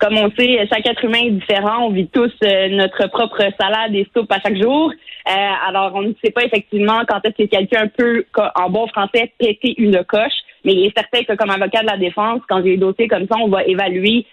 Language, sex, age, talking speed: French, female, 30-49, 235 wpm